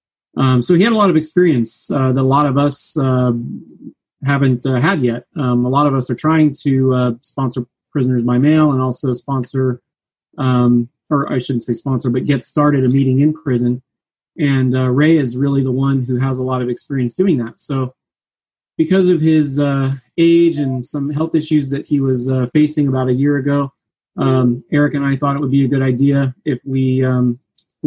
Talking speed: 205 wpm